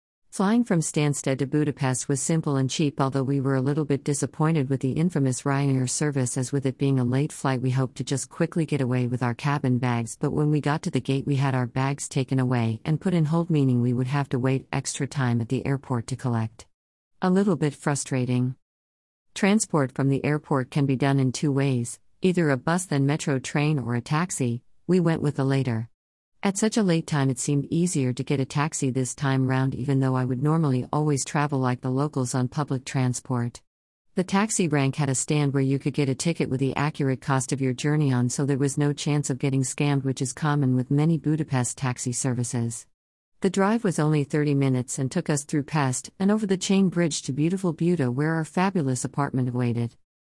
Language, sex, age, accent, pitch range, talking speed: English, female, 50-69, American, 130-150 Hz, 220 wpm